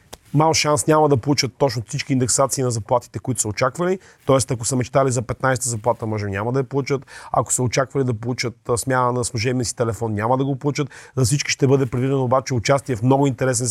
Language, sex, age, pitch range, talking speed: Bulgarian, male, 30-49, 120-145 Hz, 215 wpm